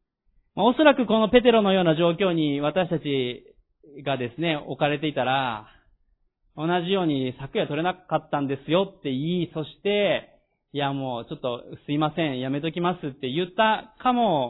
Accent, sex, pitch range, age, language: native, male, 145-190 Hz, 40-59, Japanese